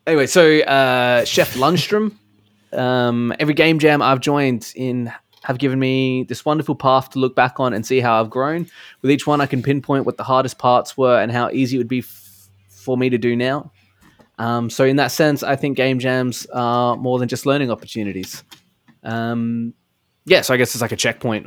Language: English